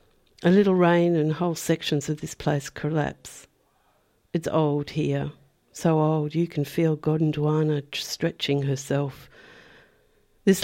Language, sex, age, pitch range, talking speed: English, female, 60-79, 150-175 Hz, 125 wpm